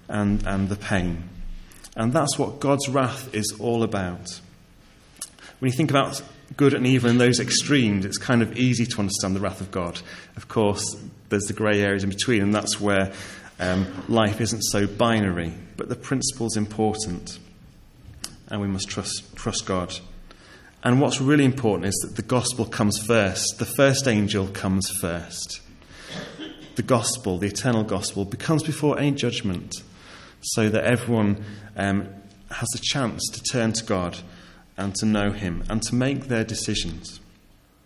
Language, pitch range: English, 95-120 Hz